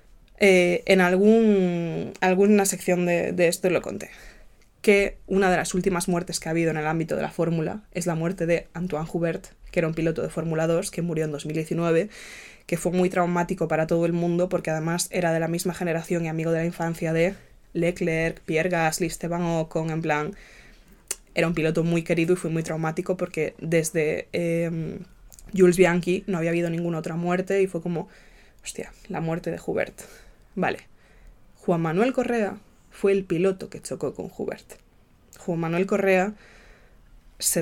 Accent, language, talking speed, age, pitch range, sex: Spanish, Spanish, 180 wpm, 20-39, 165-195 Hz, female